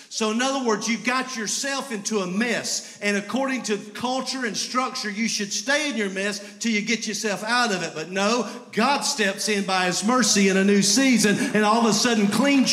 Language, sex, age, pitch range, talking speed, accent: English, male, 50-69, 205-255 Hz, 220 wpm, American